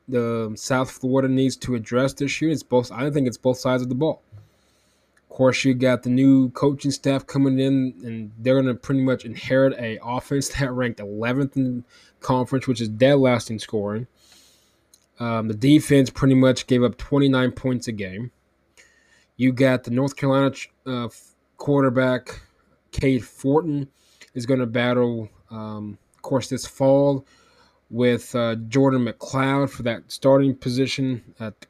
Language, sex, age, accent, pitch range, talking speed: English, male, 20-39, American, 120-135 Hz, 165 wpm